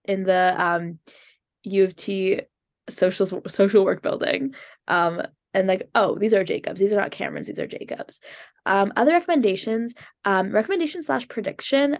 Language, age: English, 10-29